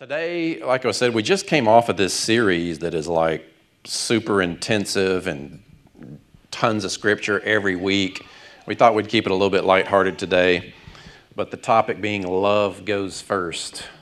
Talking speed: 165 wpm